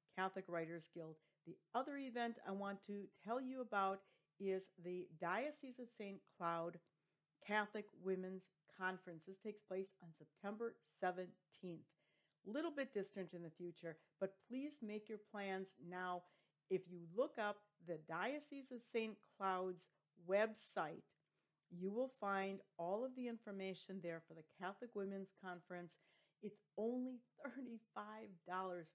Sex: female